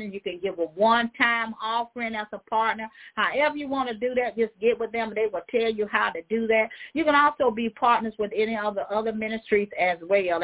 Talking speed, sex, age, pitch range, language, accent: 235 wpm, female, 40-59, 195-250 Hz, English, American